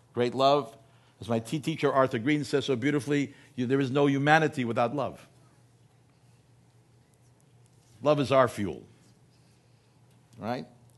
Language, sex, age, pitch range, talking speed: English, male, 60-79, 120-150 Hz, 115 wpm